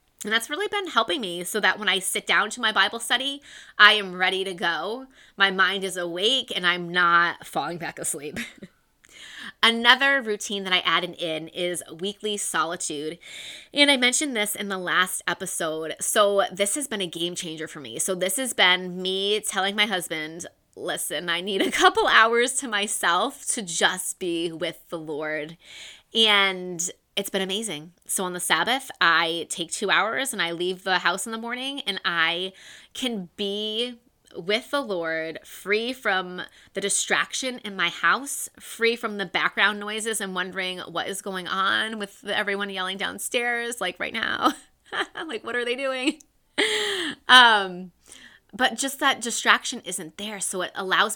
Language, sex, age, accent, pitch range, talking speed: English, female, 20-39, American, 175-230 Hz, 170 wpm